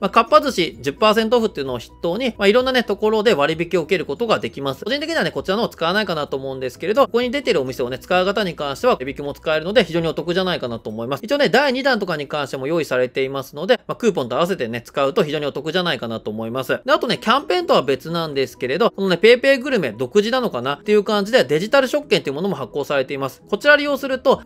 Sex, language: male, Japanese